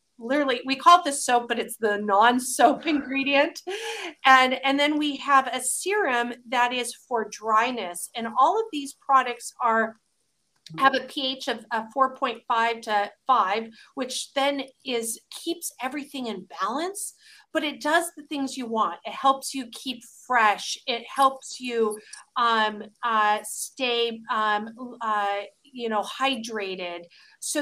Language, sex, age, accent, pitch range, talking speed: English, female, 40-59, American, 220-270 Hz, 145 wpm